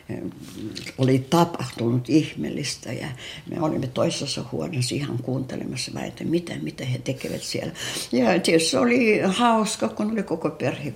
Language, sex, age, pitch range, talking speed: Finnish, female, 60-79, 130-180 Hz, 125 wpm